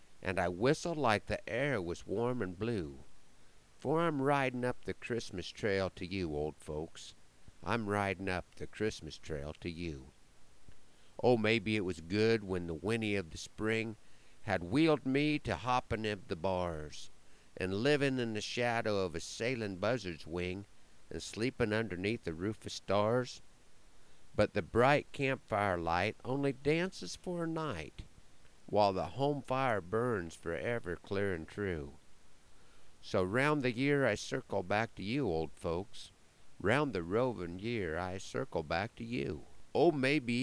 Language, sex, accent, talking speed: English, male, American, 155 wpm